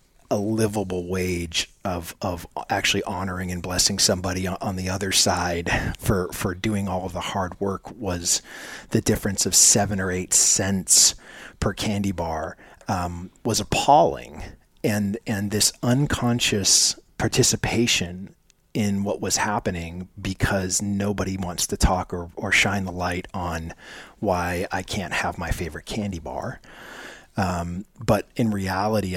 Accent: American